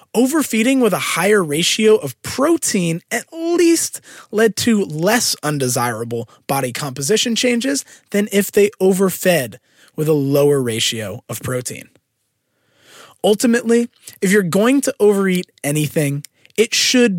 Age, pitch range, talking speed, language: 20-39, 145-210 Hz, 120 wpm, English